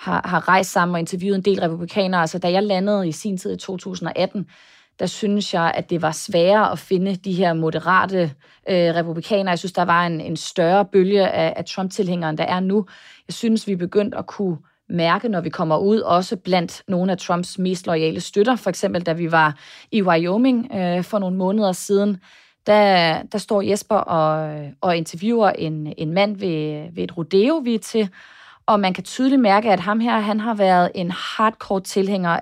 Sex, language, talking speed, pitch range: female, Danish, 200 wpm, 170-200 Hz